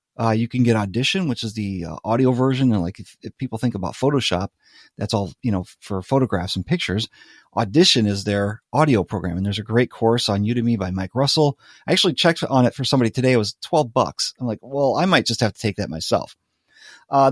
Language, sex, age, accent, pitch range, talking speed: English, male, 30-49, American, 105-135 Hz, 230 wpm